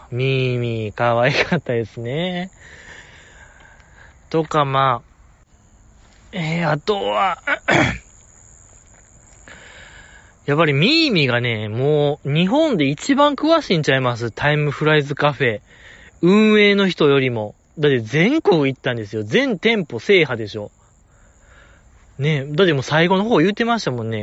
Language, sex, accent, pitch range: Japanese, male, native, 115-185 Hz